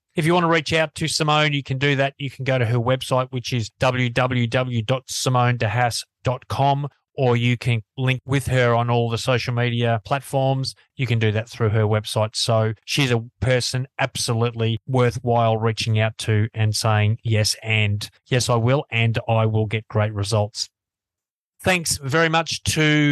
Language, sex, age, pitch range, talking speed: English, male, 30-49, 115-135 Hz, 170 wpm